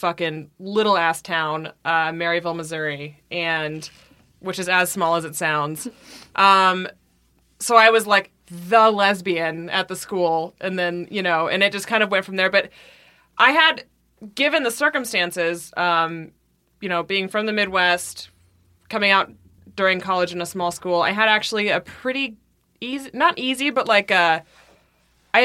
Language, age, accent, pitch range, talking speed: English, 20-39, American, 155-200 Hz, 165 wpm